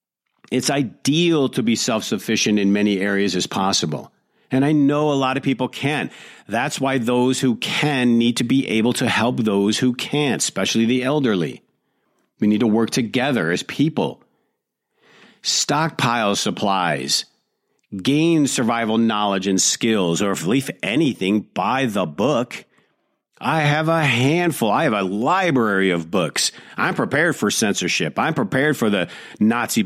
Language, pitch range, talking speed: English, 105-135 Hz, 150 wpm